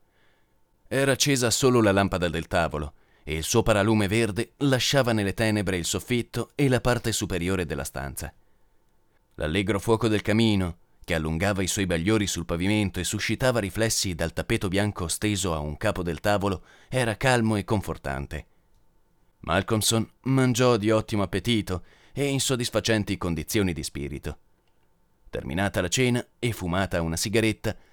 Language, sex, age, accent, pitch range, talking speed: Italian, male, 30-49, native, 85-115 Hz, 145 wpm